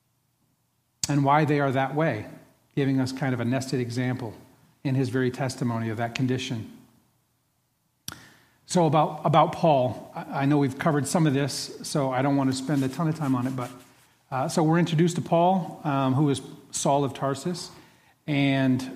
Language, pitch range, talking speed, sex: English, 125-145 Hz, 180 wpm, male